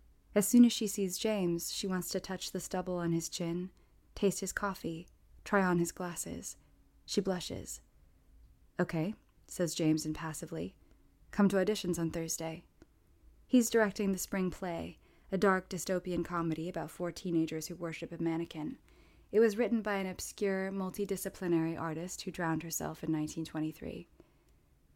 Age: 20-39